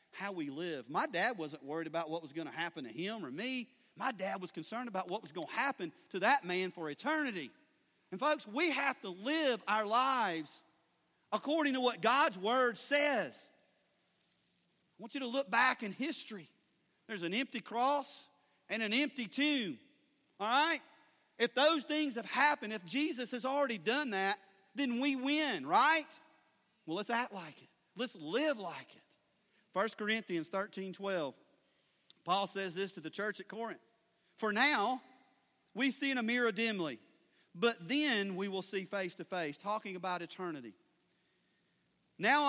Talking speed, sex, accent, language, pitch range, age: 170 wpm, male, American, English, 180-260 Hz, 40-59